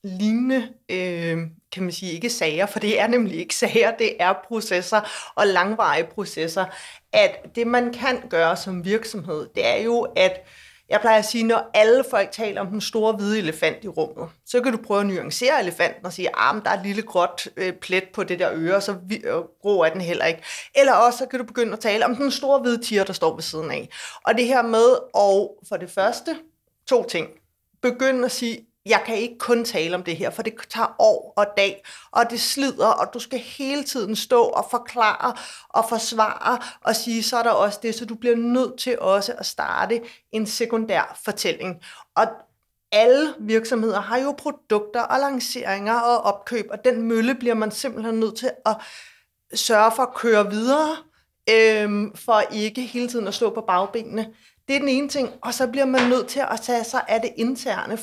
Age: 30-49